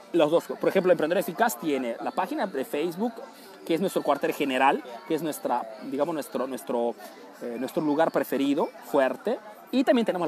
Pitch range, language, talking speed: 130-190 Hz, Spanish, 175 wpm